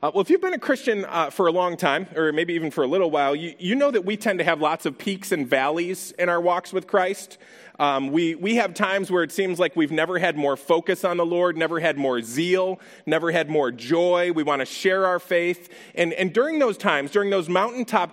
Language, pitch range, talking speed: English, 165-205 Hz, 250 wpm